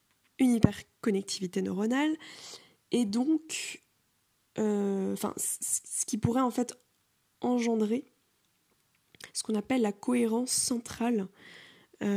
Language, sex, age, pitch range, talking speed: French, female, 20-39, 205-245 Hz, 105 wpm